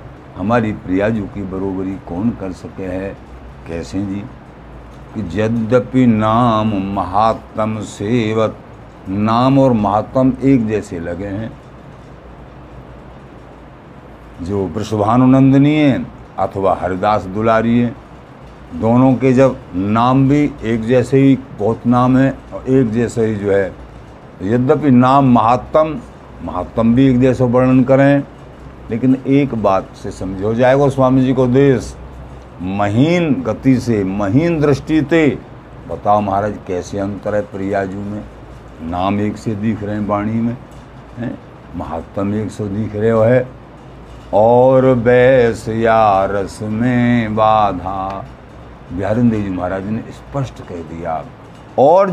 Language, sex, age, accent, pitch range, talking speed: Hindi, male, 60-79, native, 100-130 Hz, 120 wpm